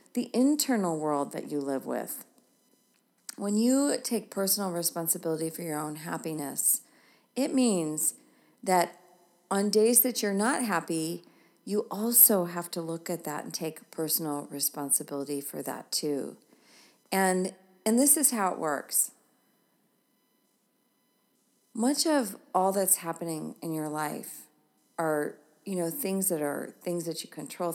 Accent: American